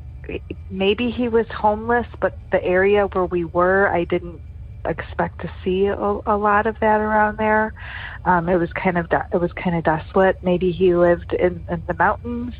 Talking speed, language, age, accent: 185 wpm, English, 30-49, American